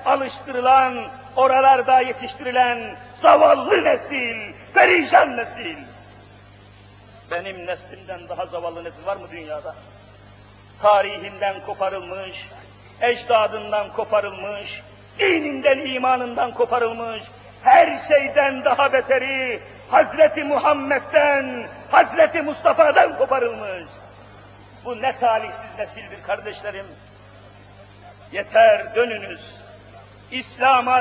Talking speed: 75 wpm